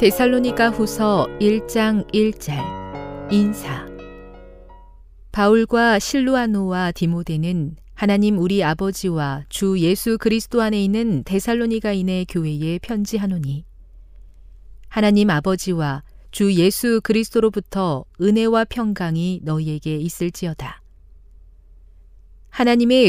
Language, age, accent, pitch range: Korean, 40-59, native, 155-215 Hz